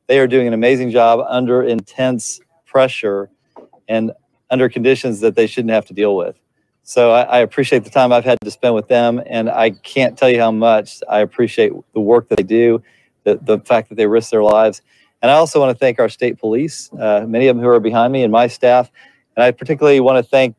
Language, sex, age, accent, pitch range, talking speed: English, male, 40-59, American, 110-125 Hz, 230 wpm